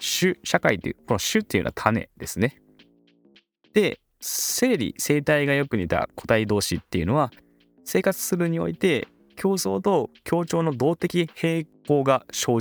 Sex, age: male, 20-39